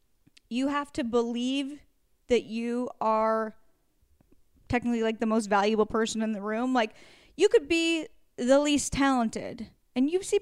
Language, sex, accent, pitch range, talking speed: English, female, American, 225-270 Hz, 150 wpm